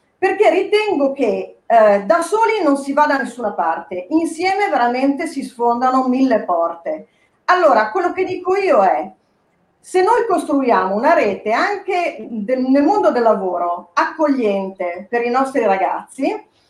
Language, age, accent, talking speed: Italian, 40-59, native, 140 wpm